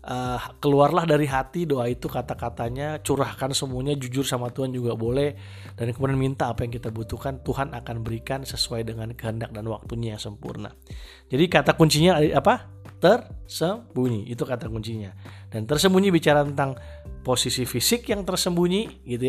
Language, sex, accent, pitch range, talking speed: Indonesian, male, native, 115-145 Hz, 150 wpm